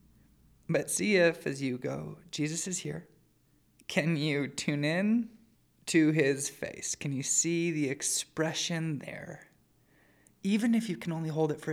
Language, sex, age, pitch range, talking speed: English, male, 20-39, 140-165 Hz, 155 wpm